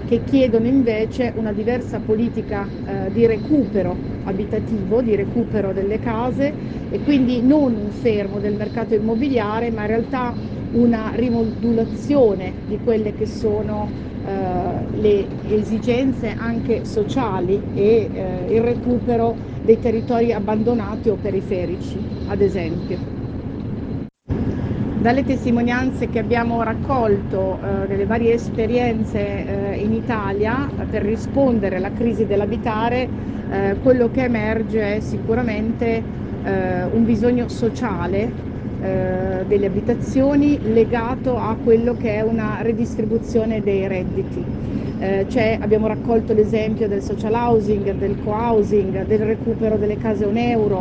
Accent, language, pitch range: native, Italian, 215-235 Hz